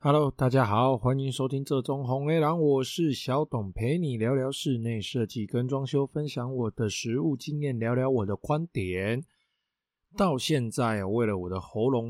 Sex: male